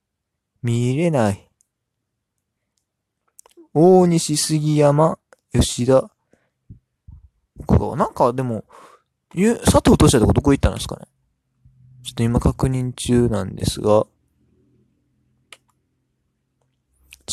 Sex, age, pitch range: male, 20-39, 100-145 Hz